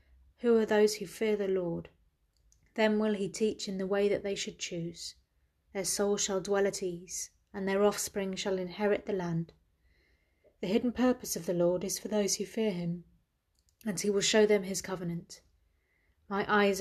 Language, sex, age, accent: English, female, 30-49, British